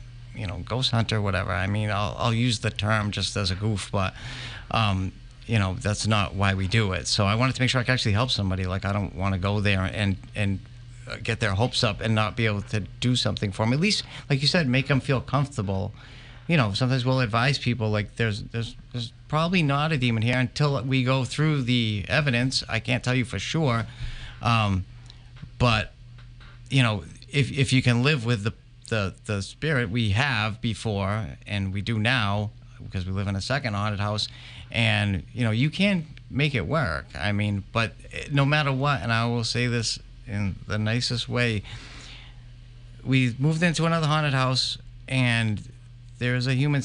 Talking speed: 205 wpm